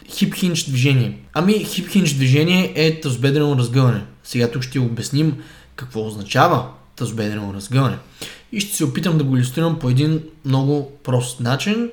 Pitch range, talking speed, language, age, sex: 130-165 Hz, 140 wpm, Bulgarian, 20-39, male